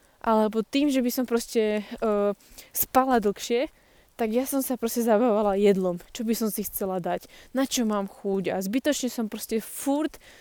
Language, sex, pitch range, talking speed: Slovak, female, 210-245 Hz, 180 wpm